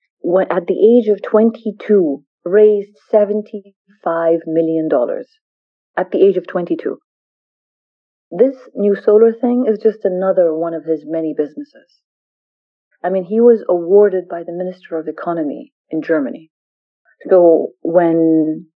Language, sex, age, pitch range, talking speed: English, female, 40-59, 175-230 Hz, 130 wpm